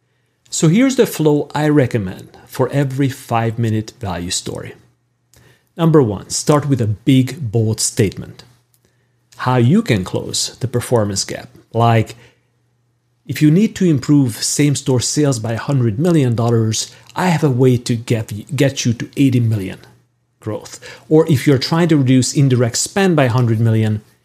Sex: male